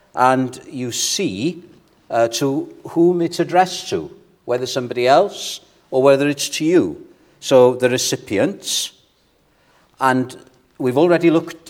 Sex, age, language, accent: male, 60-79, English, British